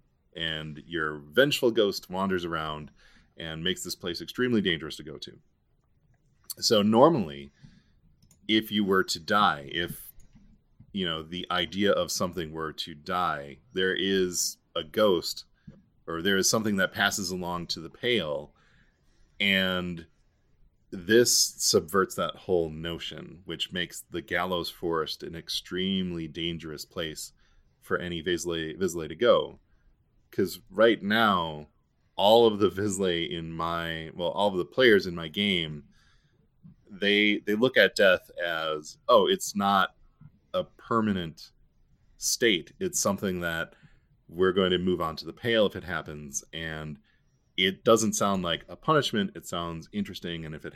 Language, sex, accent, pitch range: English, male, American, 80-100 Hz